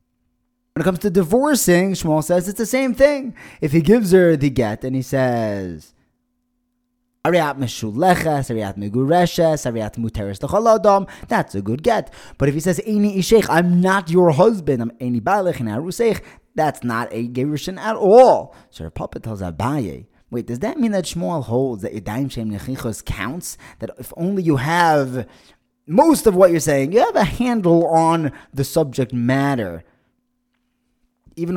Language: English